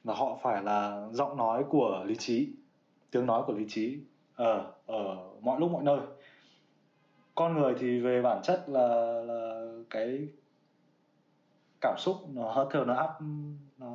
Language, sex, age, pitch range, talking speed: Vietnamese, male, 20-39, 130-175 Hz, 160 wpm